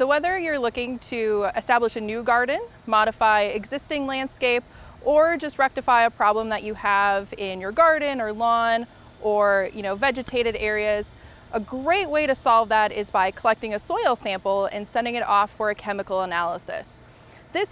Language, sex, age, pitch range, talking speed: English, female, 20-39, 210-265 Hz, 175 wpm